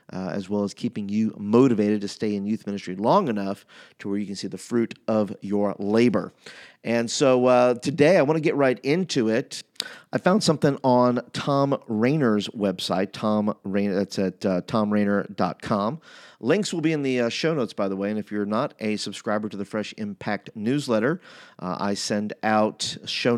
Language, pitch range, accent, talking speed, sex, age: English, 105-145 Hz, American, 185 wpm, male, 40-59